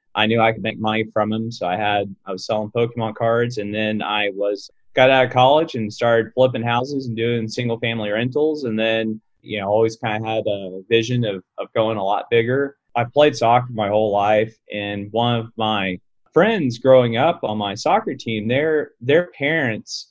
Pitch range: 110-125 Hz